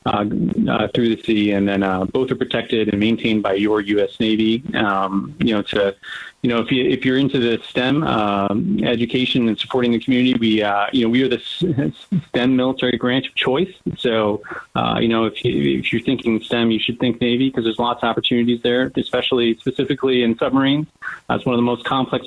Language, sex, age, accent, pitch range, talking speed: English, male, 30-49, American, 110-130 Hz, 210 wpm